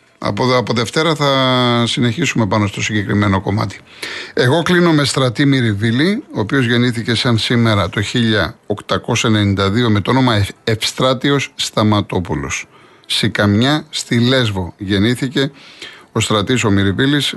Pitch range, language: 105-130 Hz, Greek